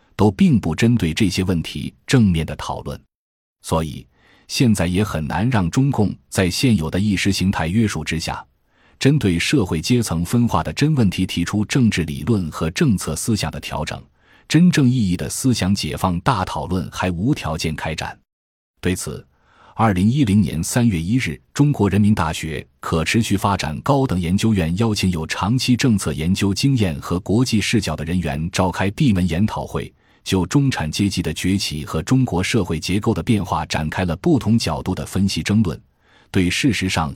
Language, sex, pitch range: Chinese, male, 80-110 Hz